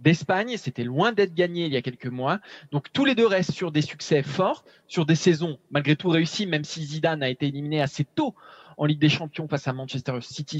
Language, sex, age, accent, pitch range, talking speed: French, male, 20-39, French, 145-185 Hz, 230 wpm